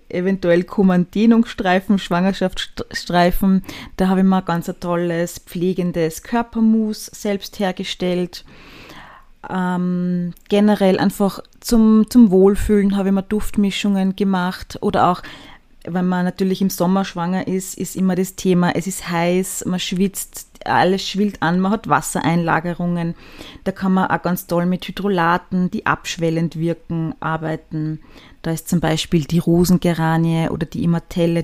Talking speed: 135 wpm